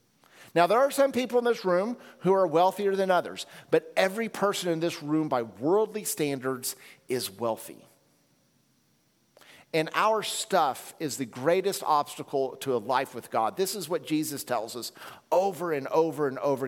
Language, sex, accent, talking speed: English, male, American, 170 wpm